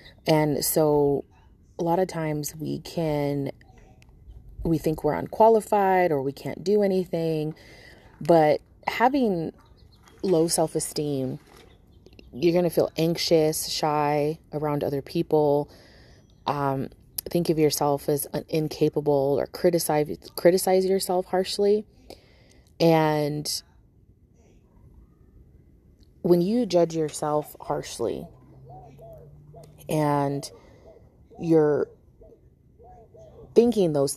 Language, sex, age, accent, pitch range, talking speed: English, female, 30-49, American, 140-175 Hz, 90 wpm